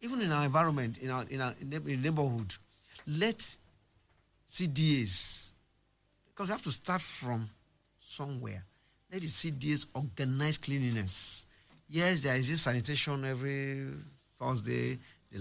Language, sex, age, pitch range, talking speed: English, male, 50-69, 110-150 Hz, 120 wpm